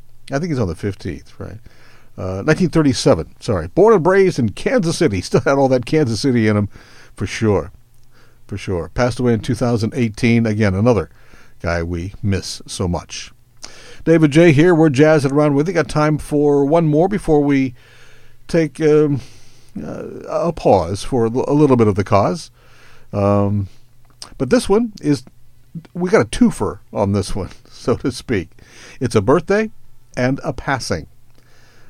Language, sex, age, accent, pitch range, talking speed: English, male, 60-79, American, 105-145 Hz, 165 wpm